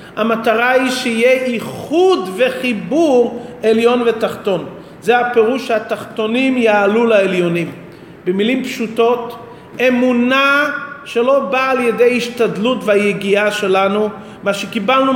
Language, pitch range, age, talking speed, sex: English, 210-255 Hz, 40-59, 90 wpm, male